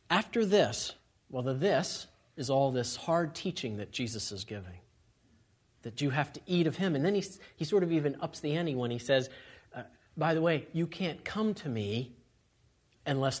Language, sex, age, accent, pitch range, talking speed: English, male, 40-59, American, 115-160 Hz, 195 wpm